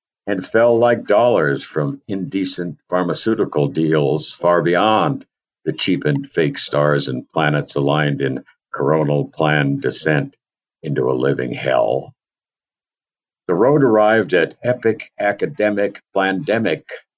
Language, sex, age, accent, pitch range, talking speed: English, male, 60-79, American, 75-110 Hz, 110 wpm